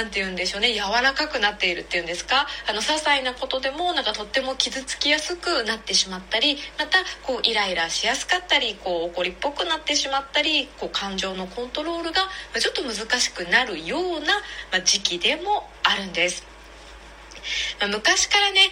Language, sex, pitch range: Japanese, female, 195-300 Hz